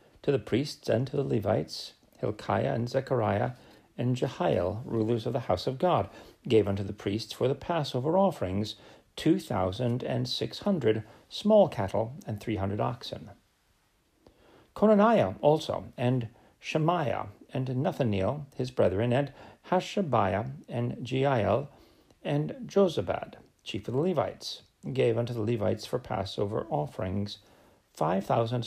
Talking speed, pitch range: 130 wpm, 110-150 Hz